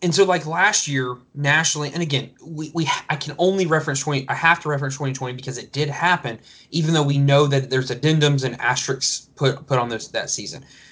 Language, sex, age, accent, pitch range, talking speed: English, male, 20-39, American, 135-175 Hz, 215 wpm